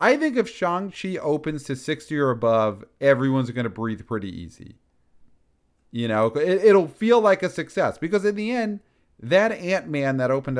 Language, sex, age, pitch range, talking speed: English, male, 40-59, 105-145 Hz, 175 wpm